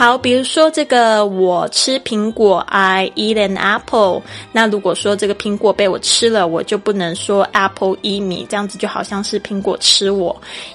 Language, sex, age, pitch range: Chinese, female, 20-39, 190-240 Hz